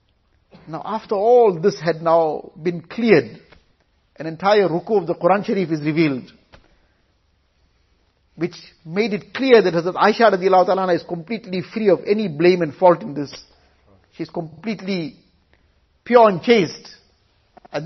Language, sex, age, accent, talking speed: English, male, 50-69, Indian, 140 wpm